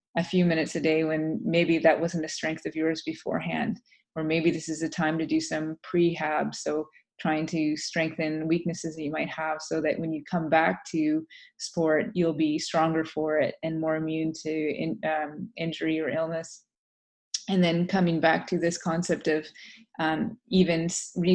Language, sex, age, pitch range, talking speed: English, female, 20-39, 160-180 Hz, 185 wpm